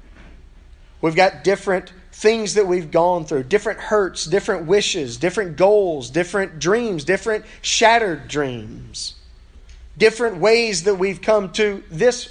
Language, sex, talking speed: English, male, 125 wpm